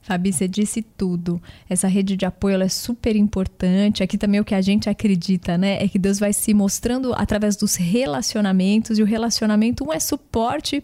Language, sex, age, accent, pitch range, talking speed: Portuguese, female, 20-39, Brazilian, 205-255 Hz, 190 wpm